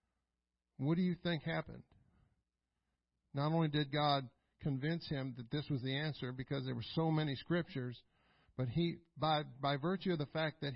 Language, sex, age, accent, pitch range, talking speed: English, male, 50-69, American, 145-175 Hz, 175 wpm